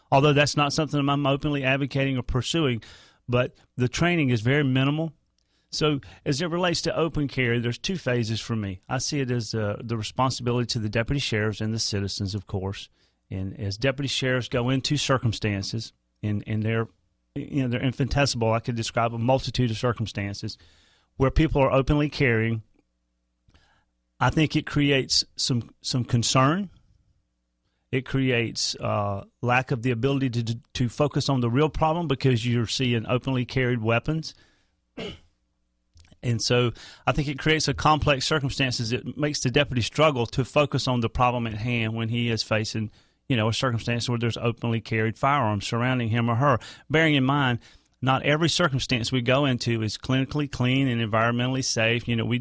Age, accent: 40-59, American